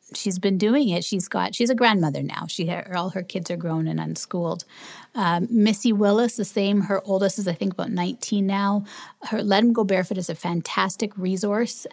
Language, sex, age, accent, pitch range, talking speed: English, female, 30-49, American, 185-220 Hz, 200 wpm